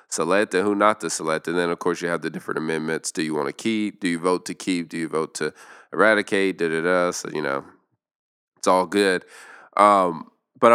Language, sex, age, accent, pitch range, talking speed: English, male, 20-39, American, 85-100 Hz, 220 wpm